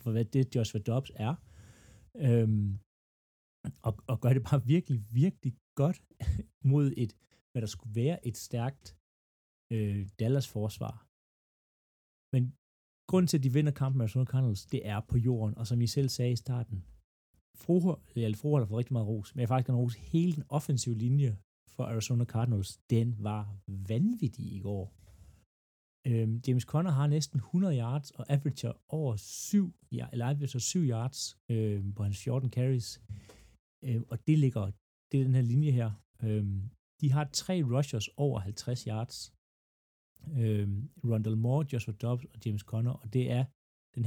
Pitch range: 105-130 Hz